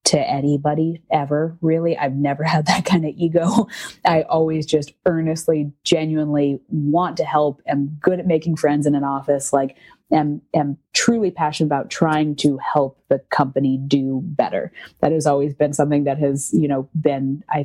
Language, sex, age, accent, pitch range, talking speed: English, female, 30-49, American, 140-160 Hz, 175 wpm